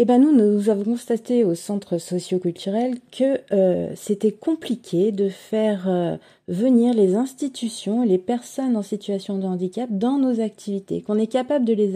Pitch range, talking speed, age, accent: 175-230 Hz, 165 wpm, 30-49, French